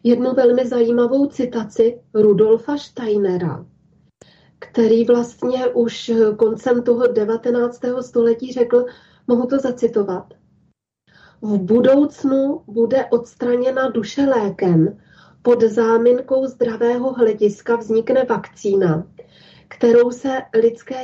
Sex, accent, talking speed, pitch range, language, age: female, native, 90 wpm, 220-245 Hz, Czech, 30-49